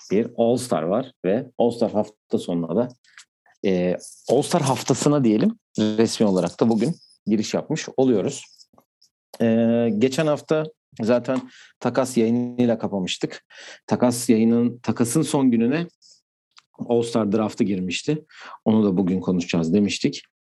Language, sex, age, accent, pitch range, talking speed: Turkish, male, 50-69, native, 100-125 Hz, 115 wpm